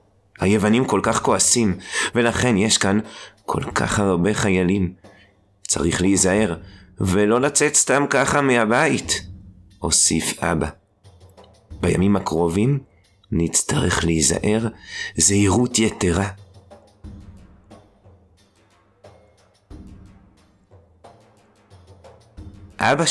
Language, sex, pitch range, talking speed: Hebrew, male, 90-100 Hz, 70 wpm